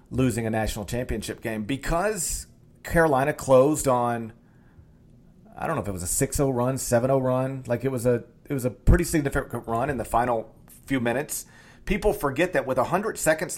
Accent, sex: American, male